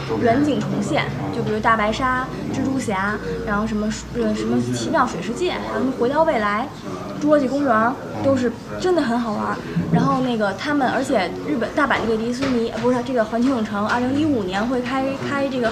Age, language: 20-39, Chinese